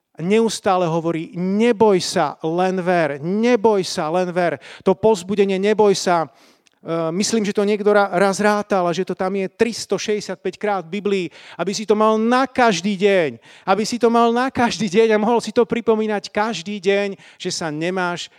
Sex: male